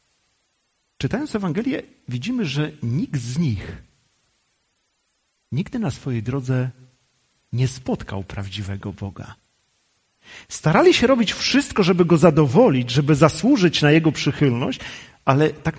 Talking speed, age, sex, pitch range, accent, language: 110 wpm, 40-59, male, 125-185 Hz, native, Polish